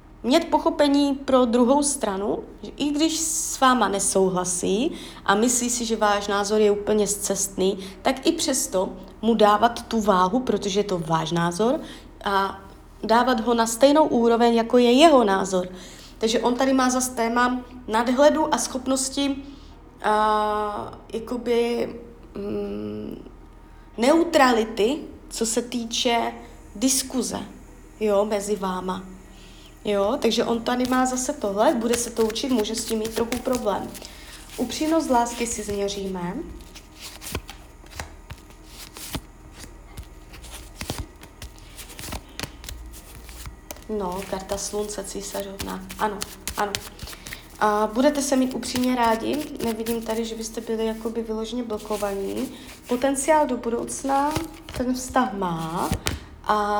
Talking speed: 110 wpm